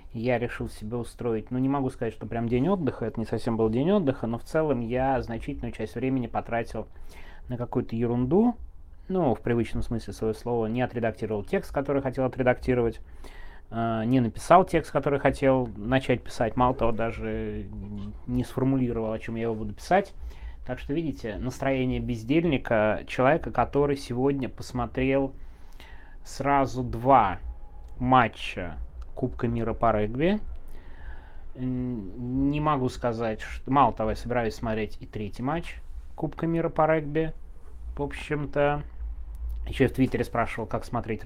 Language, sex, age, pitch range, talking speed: Russian, male, 20-39, 105-130 Hz, 145 wpm